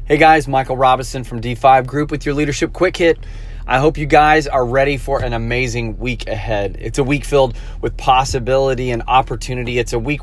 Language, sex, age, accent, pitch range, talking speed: English, male, 30-49, American, 115-140 Hz, 200 wpm